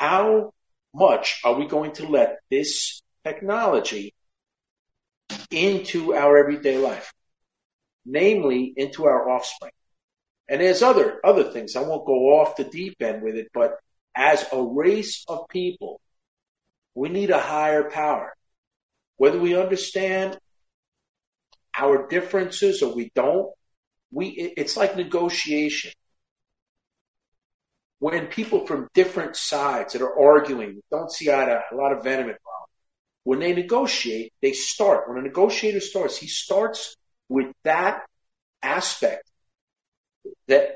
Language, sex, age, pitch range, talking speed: English, male, 50-69, 135-200 Hz, 125 wpm